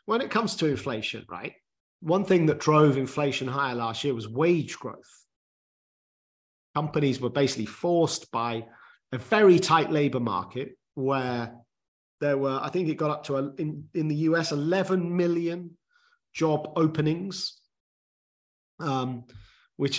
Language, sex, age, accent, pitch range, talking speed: English, male, 40-59, British, 125-155 Hz, 140 wpm